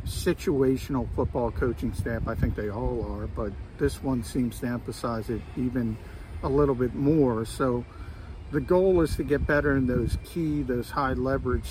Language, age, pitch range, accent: English, 50-69, 115-140 Hz, American